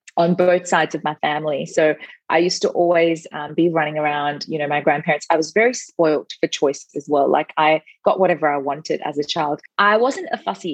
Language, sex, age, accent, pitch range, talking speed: English, female, 30-49, Australian, 155-190 Hz, 225 wpm